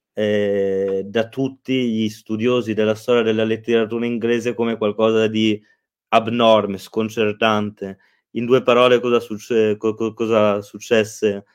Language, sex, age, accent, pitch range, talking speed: Italian, male, 30-49, native, 110-120 Hz, 110 wpm